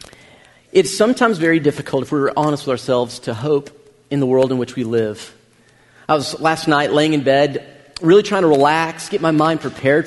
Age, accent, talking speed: 40-59, American, 195 wpm